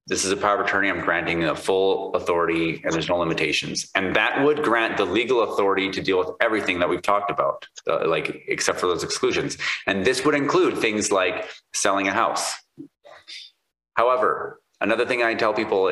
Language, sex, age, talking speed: English, male, 30-49, 190 wpm